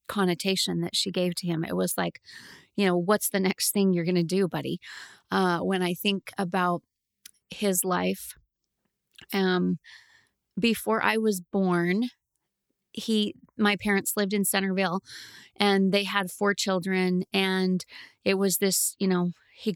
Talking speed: 150 wpm